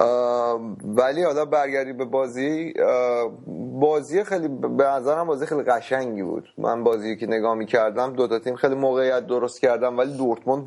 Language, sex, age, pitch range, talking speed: Persian, male, 30-49, 115-135 Hz, 165 wpm